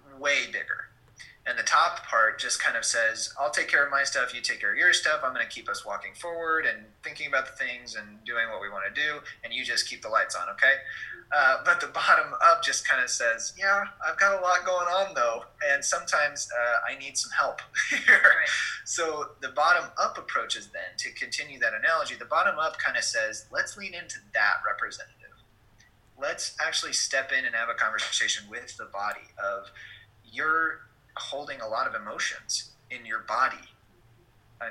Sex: male